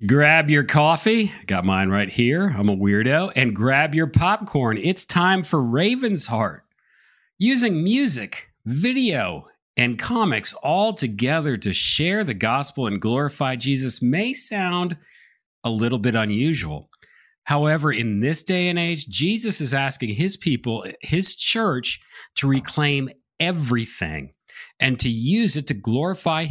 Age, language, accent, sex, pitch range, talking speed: 50-69, English, American, male, 115-180 Hz, 140 wpm